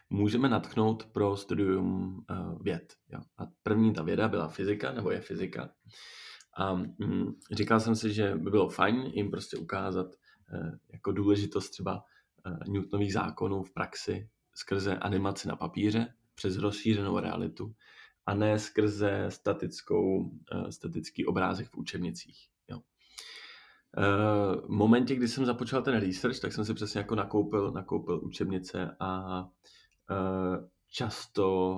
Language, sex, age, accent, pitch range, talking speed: Czech, male, 20-39, native, 95-105 Hz, 120 wpm